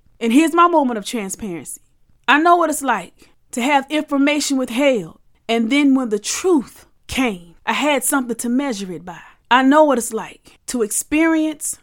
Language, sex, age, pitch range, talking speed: English, female, 30-49, 225-280 Hz, 180 wpm